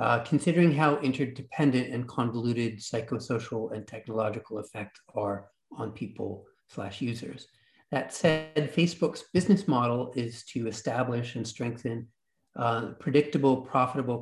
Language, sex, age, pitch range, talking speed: English, male, 40-59, 110-130 Hz, 120 wpm